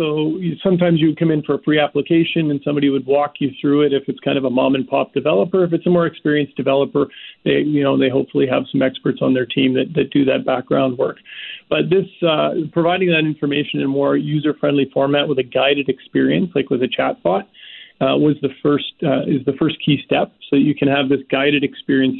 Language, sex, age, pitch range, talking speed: English, male, 40-59, 135-155 Hz, 230 wpm